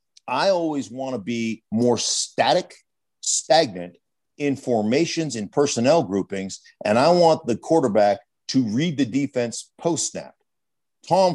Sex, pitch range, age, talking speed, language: male, 120-165 Hz, 50-69, 125 wpm, English